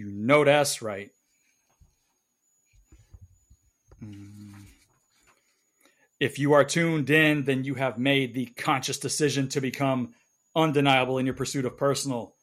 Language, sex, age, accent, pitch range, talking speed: English, male, 40-59, American, 125-145 Hz, 115 wpm